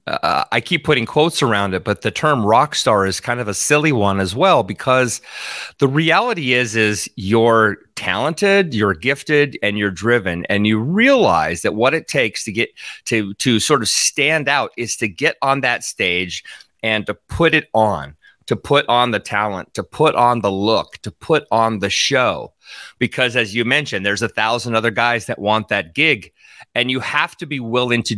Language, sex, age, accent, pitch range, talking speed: English, male, 30-49, American, 100-140 Hz, 200 wpm